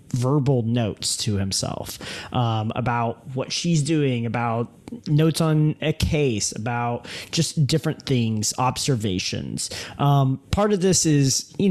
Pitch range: 115-145 Hz